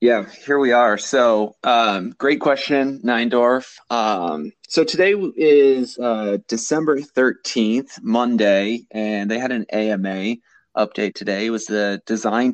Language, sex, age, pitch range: English, male, 30-49, 105-125 Hz